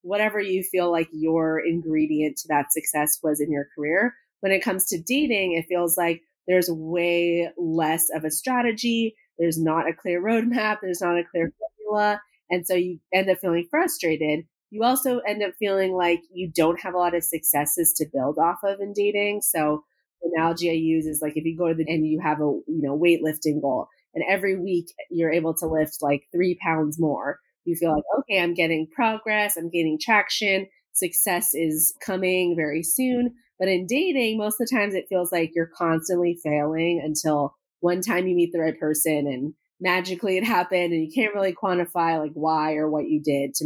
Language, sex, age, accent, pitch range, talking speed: English, female, 30-49, American, 160-195 Hz, 200 wpm